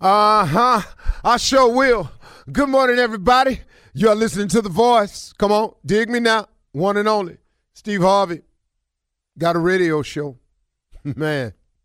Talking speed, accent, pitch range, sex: 135 wpm, American, 105-165 Hz, male